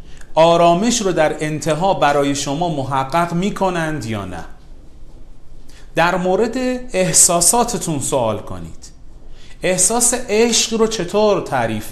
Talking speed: 105 wpm